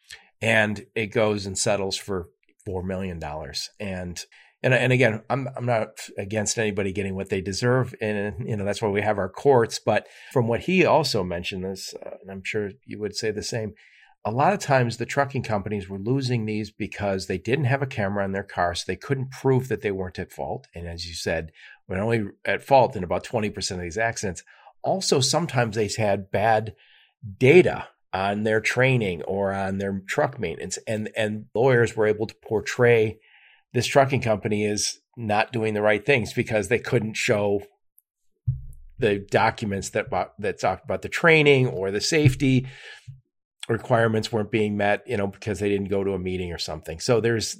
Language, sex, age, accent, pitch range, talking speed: English, male, 40-59, American, 100-125 Hz, 190 wpm